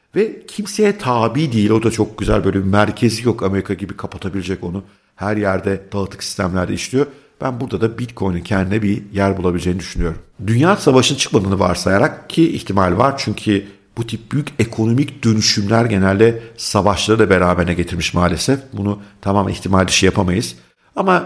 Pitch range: 100-120 Hz